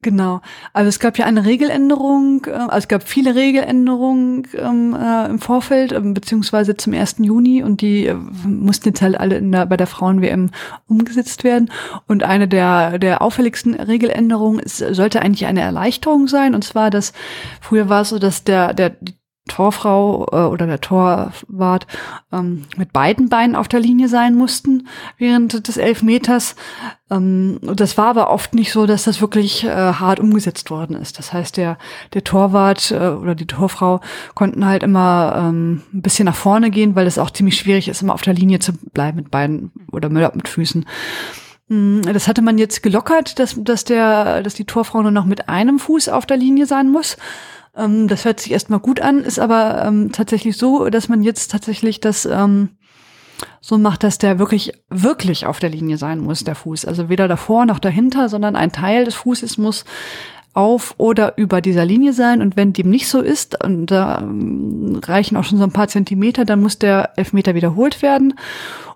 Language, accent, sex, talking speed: German, German, female, 180 wpm